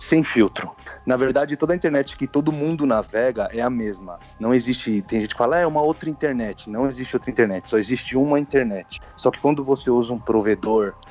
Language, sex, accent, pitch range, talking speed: Portuguese, male, Brazilian, 110-140 Hz, 205 wpm